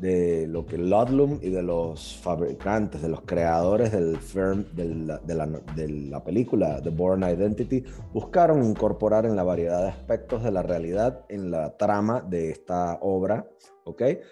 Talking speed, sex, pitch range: 170 wpm, male, 85-105 Hz